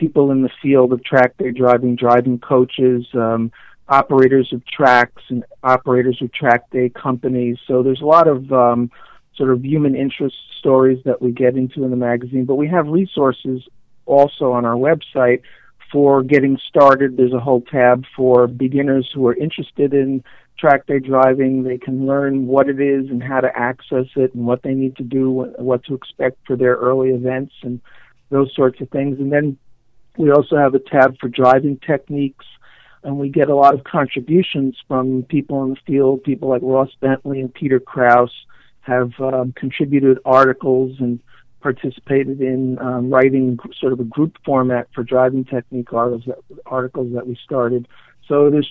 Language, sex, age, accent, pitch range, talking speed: English, male, 50-69, American, 125-140 Hz, 175 wpm